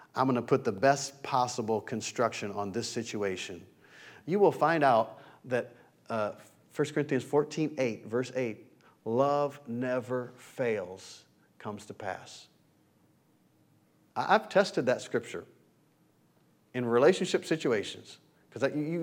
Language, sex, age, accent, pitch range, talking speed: English, male, 40-59, American, 115-145 Hz, 115 wpm